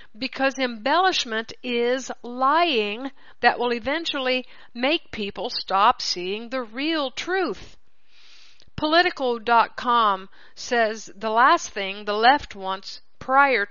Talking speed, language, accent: 100 wpm, English, American